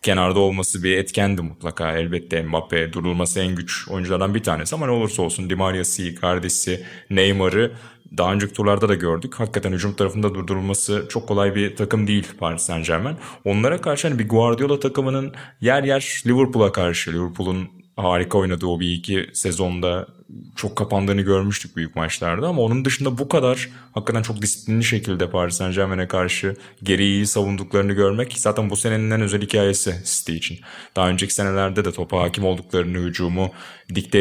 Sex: male